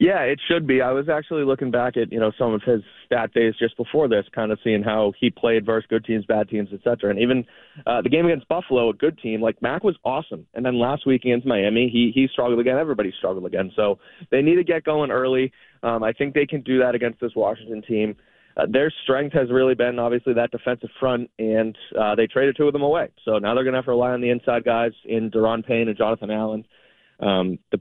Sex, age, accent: male, 20-39, American